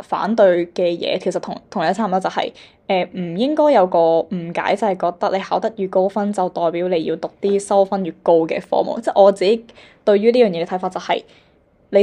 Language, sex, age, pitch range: Chinese, female, 10-29, 180-215 Hz